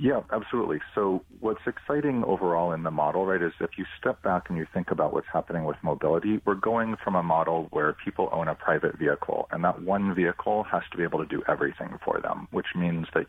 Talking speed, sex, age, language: 225 wpm, male, 40-59, English